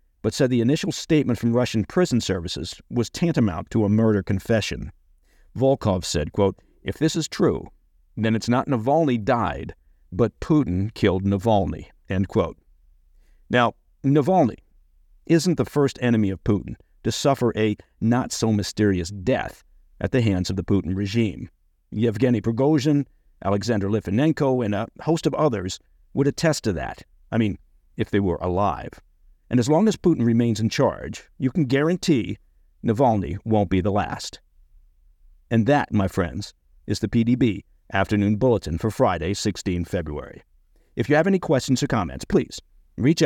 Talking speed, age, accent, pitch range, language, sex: 150 wpm, 50-69, American, 85-125 Hz, English, male